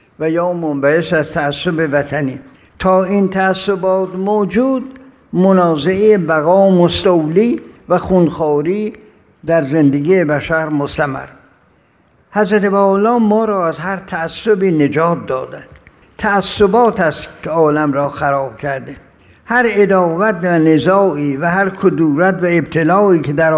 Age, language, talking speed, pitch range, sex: 60-79, Persian, 115 wpm, 160-200 Hz, male